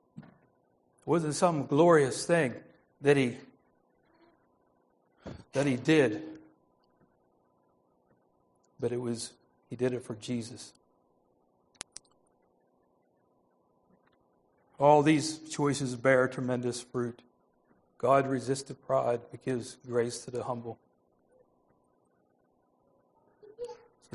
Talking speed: 80 wpm